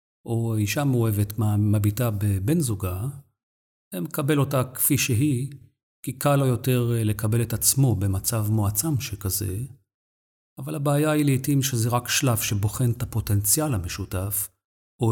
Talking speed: 130 wpm